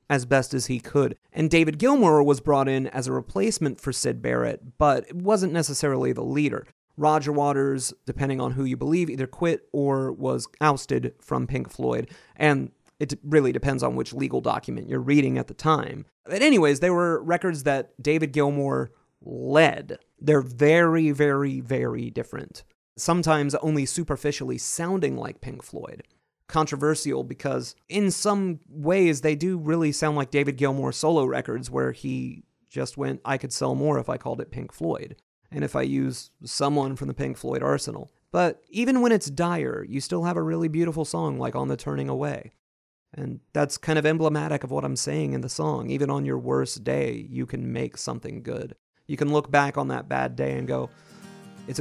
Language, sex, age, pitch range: English, male, 30-49, 105-155 Hz